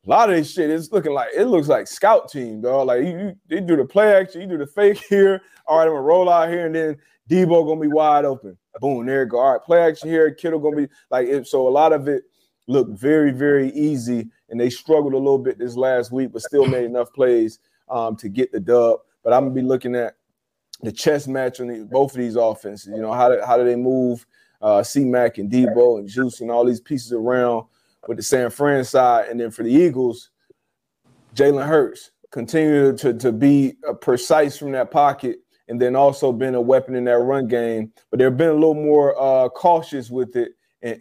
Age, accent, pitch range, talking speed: 30-49, American, 125-160 Hz, 235 wpm